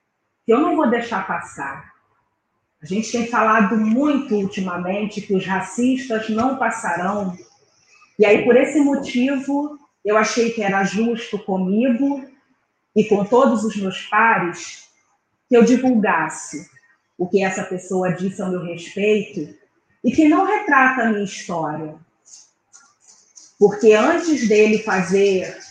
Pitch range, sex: 190-245 Hz, female